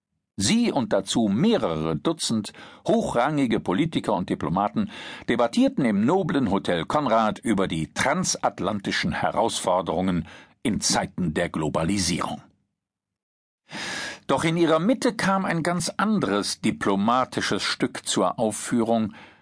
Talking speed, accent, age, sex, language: 105 wpm, German, 50-69, male, German